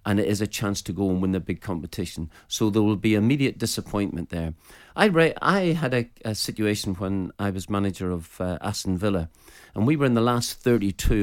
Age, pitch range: 40-59, 95-115 Hz